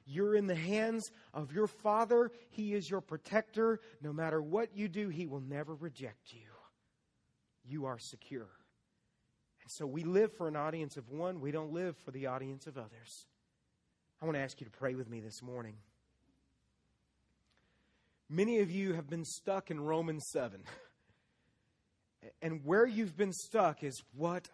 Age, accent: 30-49, American